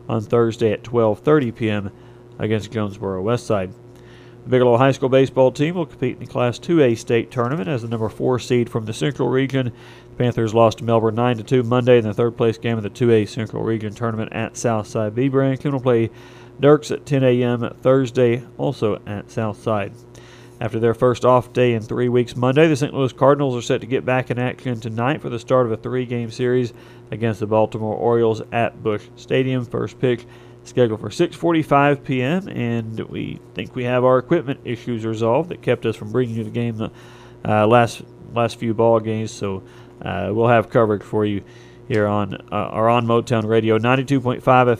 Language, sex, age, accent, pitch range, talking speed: English, male, 40-59, American, 110-125 Hz, 190 wpm